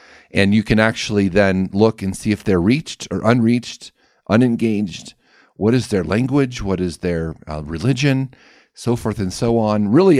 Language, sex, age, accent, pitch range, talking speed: English, male, 40-59, American, 100-120 Hz, 170 wpm